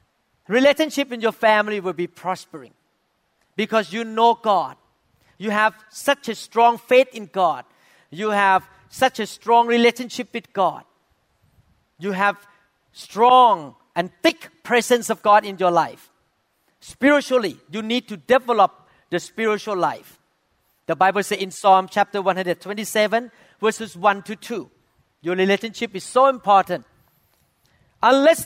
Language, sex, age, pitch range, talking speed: English, male, 40-59, 195-245 Hz, 135 wpm